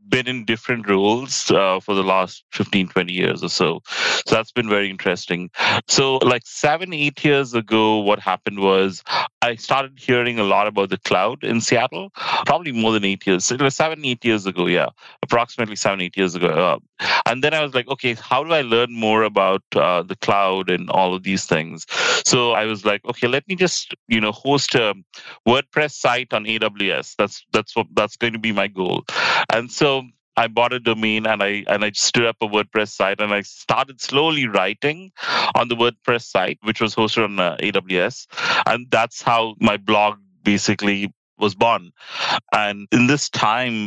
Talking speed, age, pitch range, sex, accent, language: 190 wpm, 30-49, 100-125 Hz, male, Indian, English